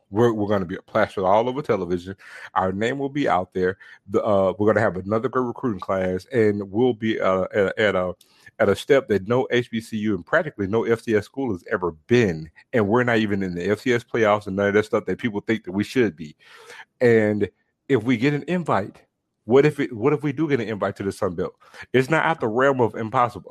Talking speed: 240 wpm